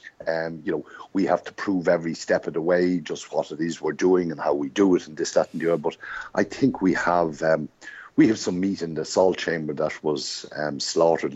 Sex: male